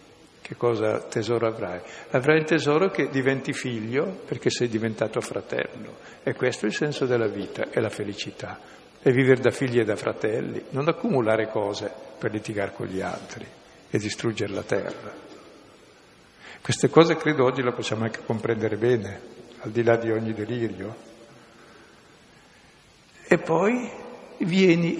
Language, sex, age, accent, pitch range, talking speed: Italian, male, 60-79, native, 115-145 Hz, 145 wpm